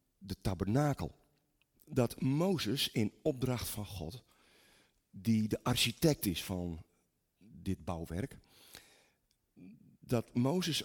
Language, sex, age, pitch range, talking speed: Dutch, male, 50-69, 90-135 Hz, 95 wpm